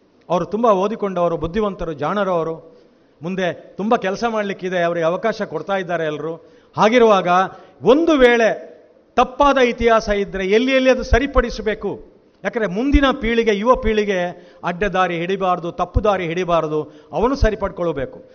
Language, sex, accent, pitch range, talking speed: Kannada, male, native, 170-220 Hz, 125 wpm